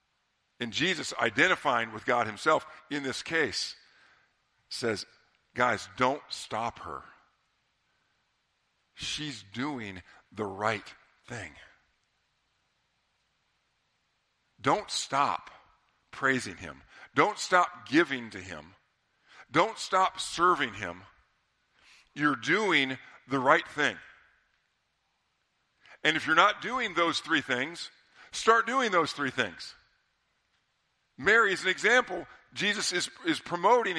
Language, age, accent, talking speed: English, 50-69, American, 100 wpm